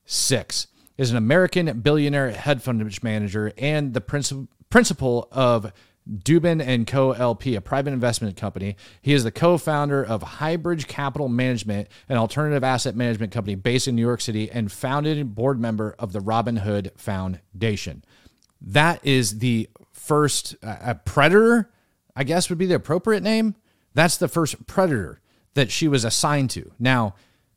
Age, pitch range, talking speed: 30-49, 110-150 Hz, 155 wpm